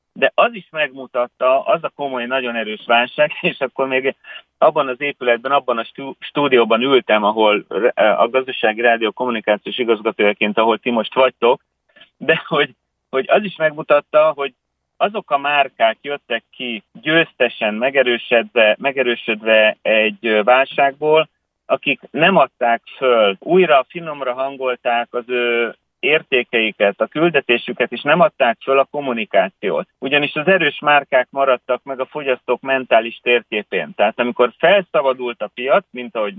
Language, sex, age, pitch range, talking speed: Hungarian, male, 30-49, 120-140 Hz, 135 wpm